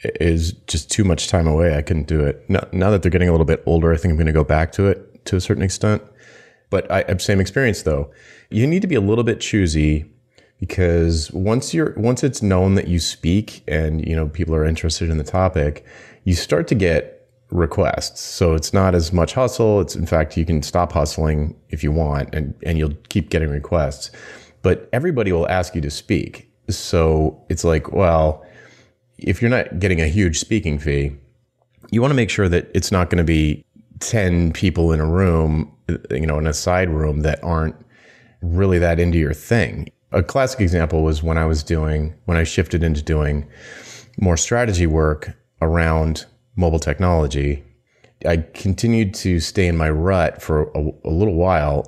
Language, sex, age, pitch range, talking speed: English, male, 30-49, 80-100 Hz, 195 wpm